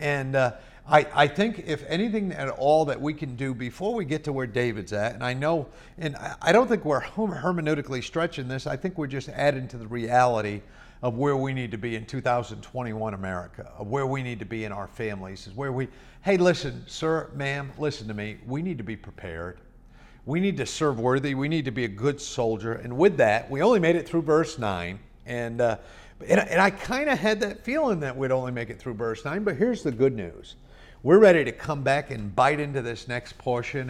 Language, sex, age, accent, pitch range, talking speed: English, male, 50-69, American, 120-155 Hz, 225 wpm